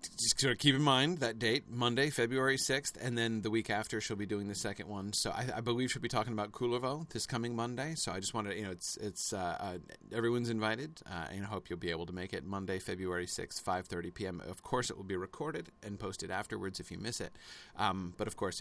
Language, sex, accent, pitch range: English, male, American, 90-120 Hz